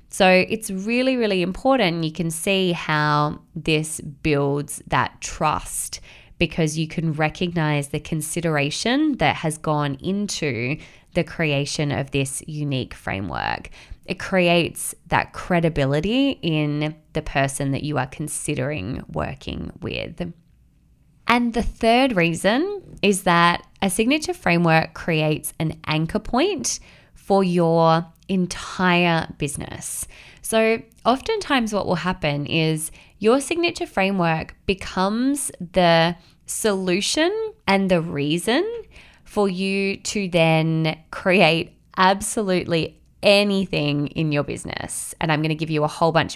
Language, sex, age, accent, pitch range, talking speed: English, female, 20-39, Australian, 155-200 Hz, 120 wpm